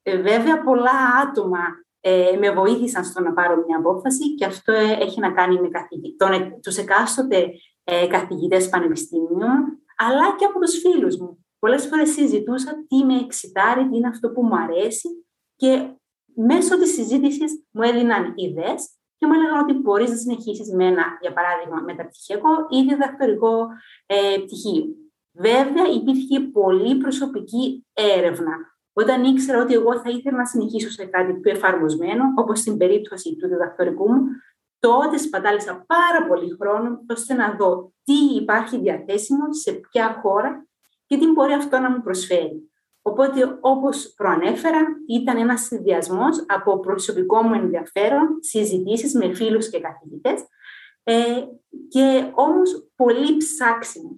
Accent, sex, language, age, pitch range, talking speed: native, female, Greek, 30-49, 195-280 Hz, 140 wpm